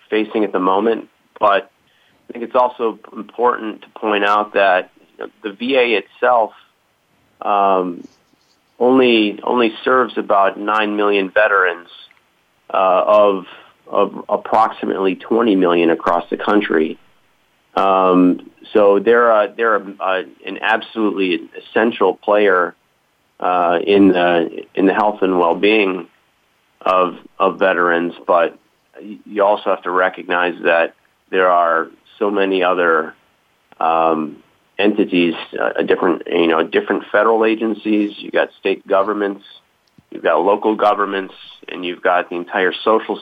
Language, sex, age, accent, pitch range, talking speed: English, male, 30-49, American, 90-110 Hz, 130 wpm